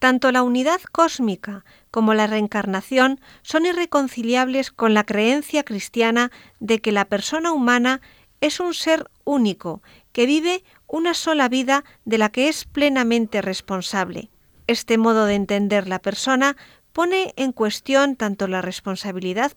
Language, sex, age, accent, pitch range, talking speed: Spanish, female, 50-69, Spanish, 205-285 Hz, 140 wpm